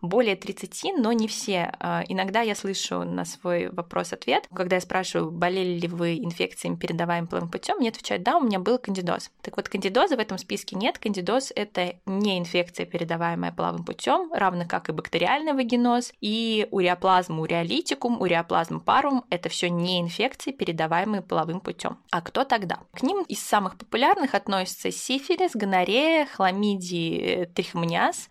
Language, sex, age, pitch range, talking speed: Russian, female, 20-39, 180-240 Hz, 150 wpm